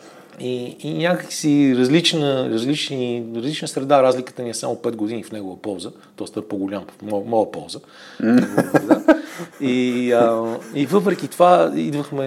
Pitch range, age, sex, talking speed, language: 110-135 Hz, 40-59, male, 145 wpm, Bulgarian